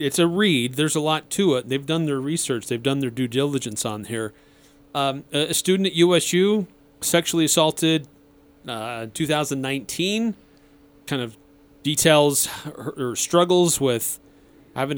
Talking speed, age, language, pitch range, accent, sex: 140 wpm, 30-49, English, 135-160 Hz, American, male